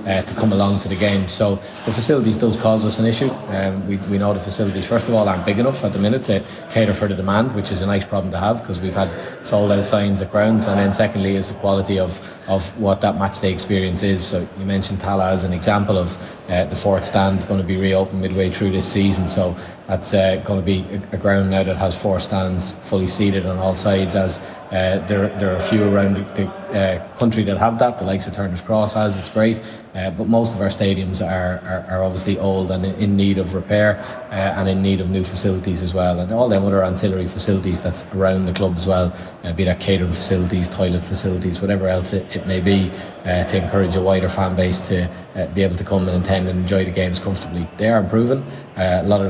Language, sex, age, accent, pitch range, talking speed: English, male, 20-39, Irish, 95-100 Hz, 250 wpm